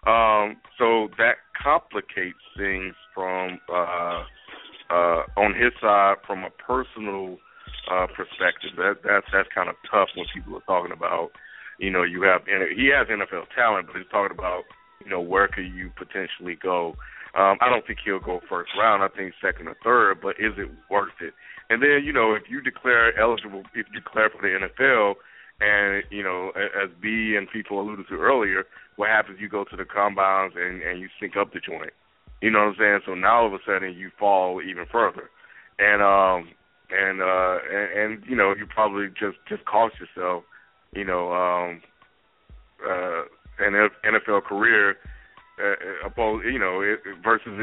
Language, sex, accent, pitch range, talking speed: English, male, American, 90-105 Hz, 185 wpm